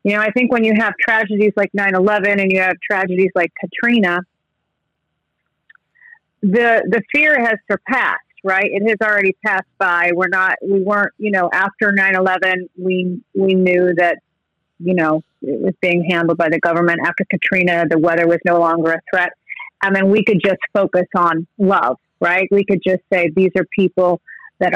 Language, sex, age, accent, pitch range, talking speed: English, female, 40-59, American, 180-215 Hz, 180 wpm